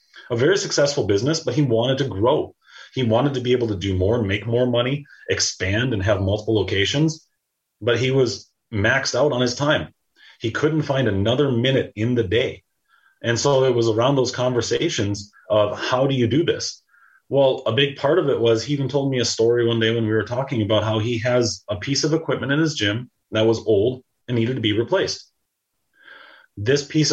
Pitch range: 105-135 Hz